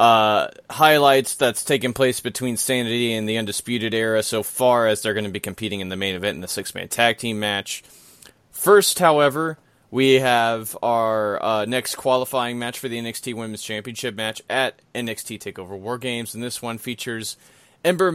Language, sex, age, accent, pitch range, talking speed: English, male, 30-49, American, 105-130 Hz, 180 wpm